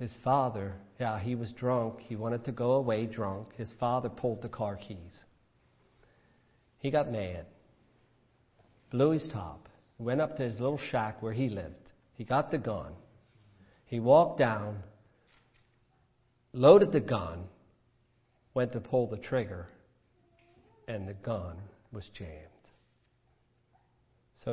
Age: 50-69